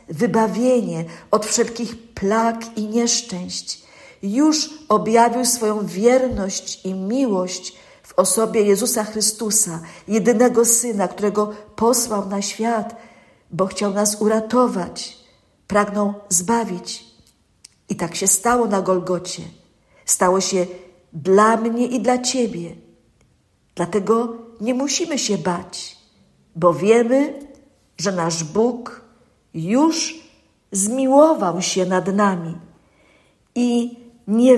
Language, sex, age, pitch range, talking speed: Polish, female, 50-69, 180-230 Hz, 100 wpm